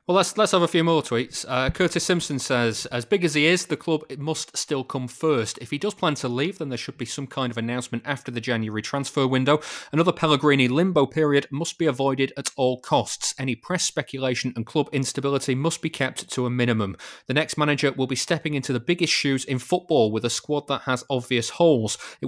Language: English